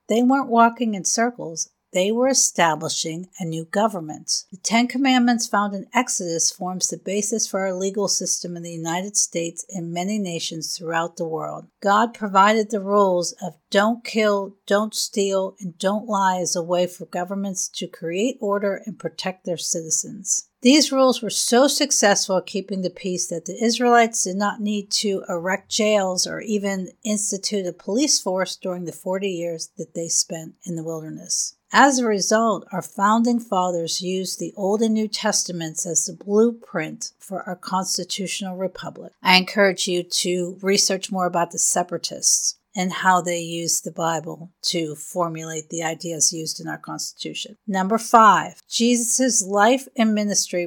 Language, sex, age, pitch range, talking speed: English, female, 50-69, 175-215 Hz, 165 wpm